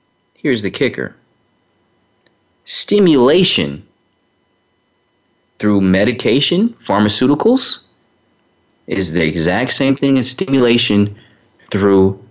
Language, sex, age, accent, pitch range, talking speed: English, male, 30-49, American, 95-125 Hz, 75 wpm